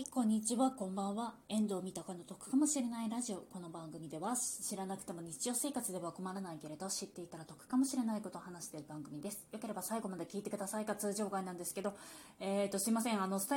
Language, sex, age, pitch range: Japanese, female, 20-39, 180-255 Hz